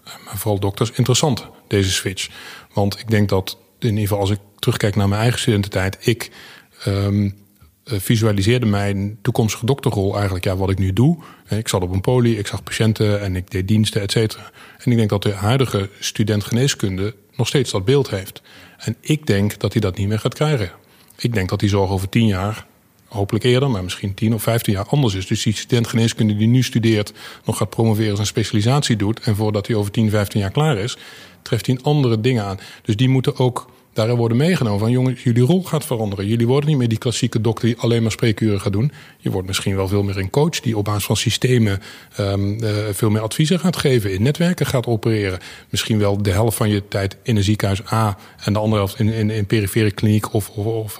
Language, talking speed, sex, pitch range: Dutch, 220 wpm, male, 100-125 Hz